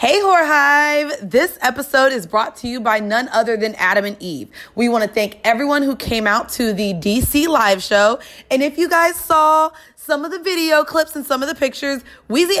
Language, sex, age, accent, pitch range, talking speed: English, female, 20-39, American, 210-285 Hz, 215 wpm